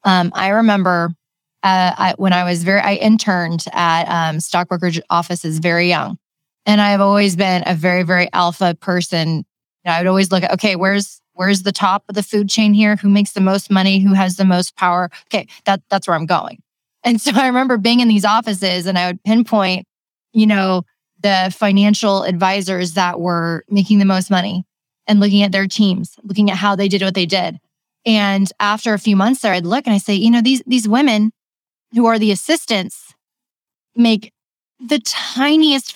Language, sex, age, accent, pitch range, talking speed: English, female, 20-39, American, 185-225 Hz, 195 wpm